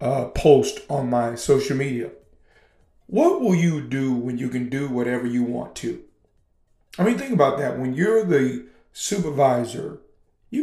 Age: 40-59